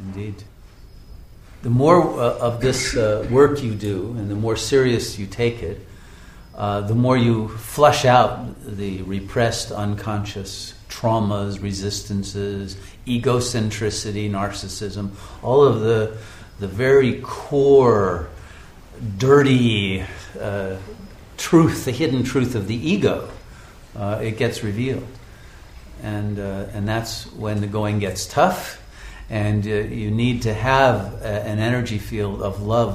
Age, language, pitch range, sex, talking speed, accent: 50-69, English, 100-125 Hz, male, 125 wpm, American